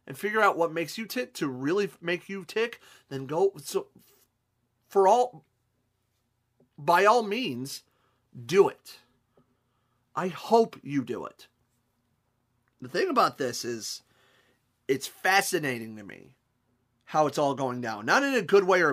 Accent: American